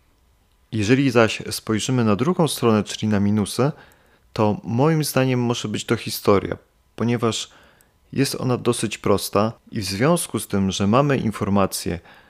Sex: male